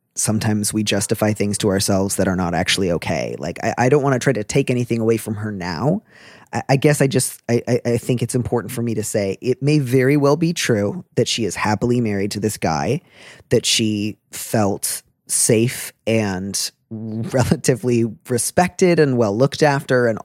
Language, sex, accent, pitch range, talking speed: English, male, American, 110-140 Hz, 195 wpm